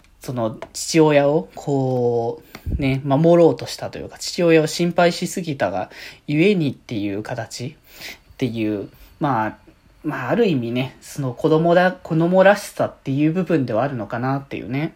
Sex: male